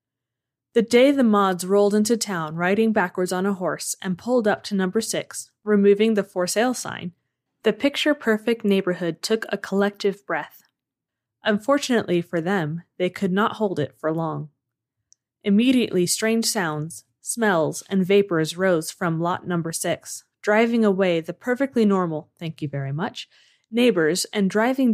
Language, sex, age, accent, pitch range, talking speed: English, female, 20-39, American, 165-225 Hz, 155 wpm